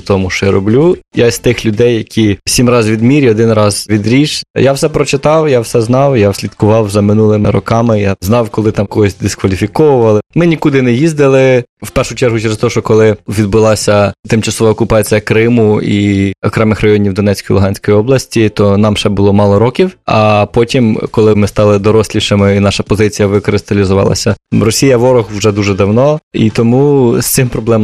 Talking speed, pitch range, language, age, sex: 170 wpm, 105-125 Hz, Ukrainian, 20-39, male